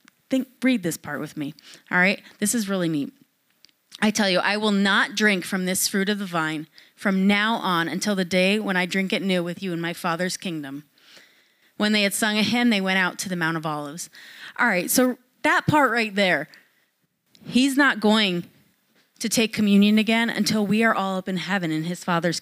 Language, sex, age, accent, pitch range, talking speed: English, female, 30-49, American, 175-220 Hz, 215 wpm